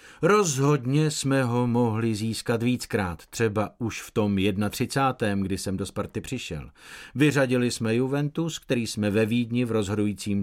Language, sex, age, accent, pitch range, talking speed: Czech, male, 50-69, native, 110-155 Hz, 145 wpm